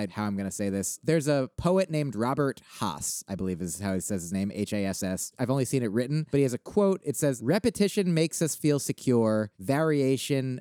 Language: English